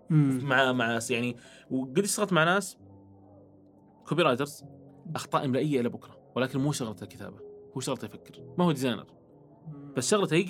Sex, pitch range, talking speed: male, 125-160 Hz, 135 wpm